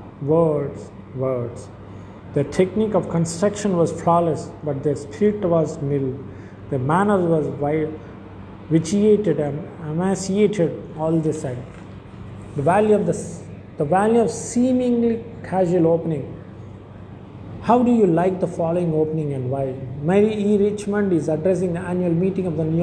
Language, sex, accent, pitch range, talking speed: English, male, Indian, 150-185 Hz, 135 wpm